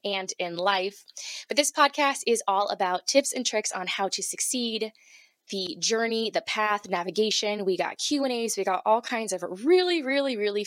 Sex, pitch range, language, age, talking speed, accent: female, 185-245 Hz, English, 10-29, 180 wpm, American